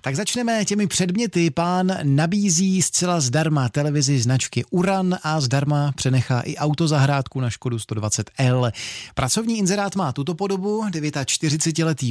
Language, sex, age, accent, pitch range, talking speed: Czech, male, 30-49, native, 125-170 Hz, 125 wpm